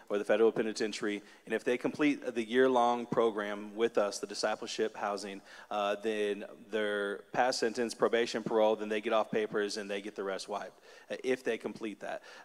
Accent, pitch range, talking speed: American, 105-120 Hz, 185 wpm